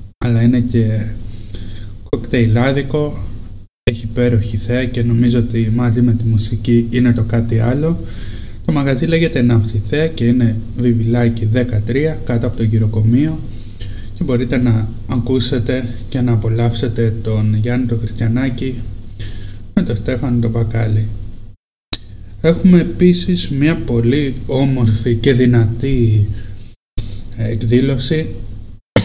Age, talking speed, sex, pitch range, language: 20-39, 115 wpm, male, 105-125 Hz, Greek